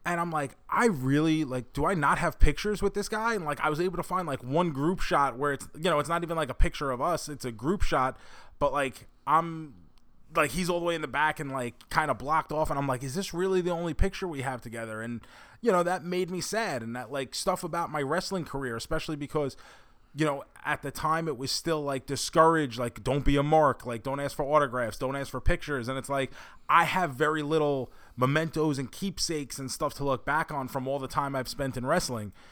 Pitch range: 130-160 Hz